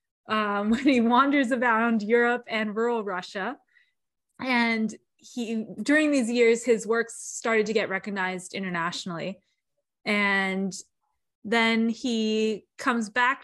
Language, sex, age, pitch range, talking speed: English, female, 20-39, 195-245 Hz, 115 wpm